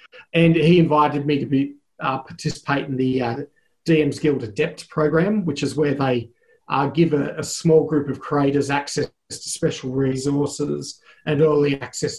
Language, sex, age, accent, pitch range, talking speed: English, male, 40-59, Australian, 135-160 Hz, 165 wpm